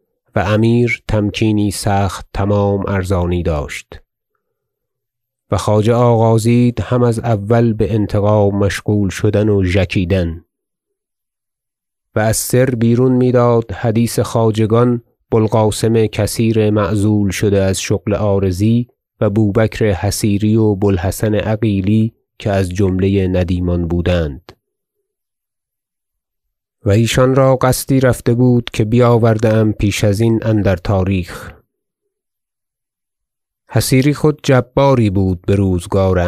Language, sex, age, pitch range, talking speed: Persian, male, 30-49, 100-120 Hz, 110 wpm